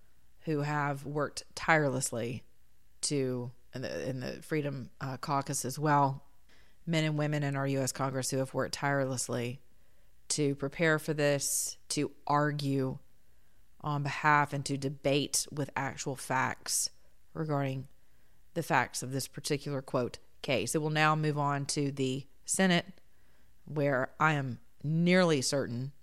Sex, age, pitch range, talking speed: female, 30-49, 130-155 Hz, 140 wpm